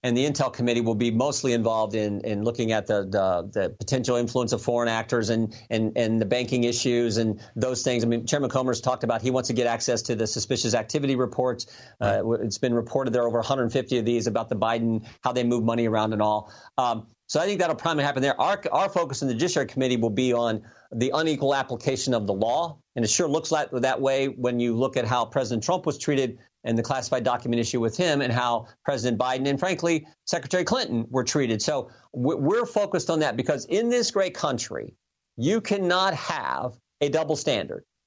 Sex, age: male, 50-69